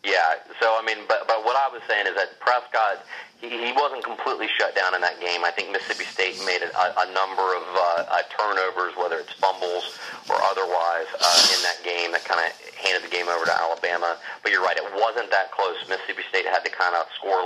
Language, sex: English, male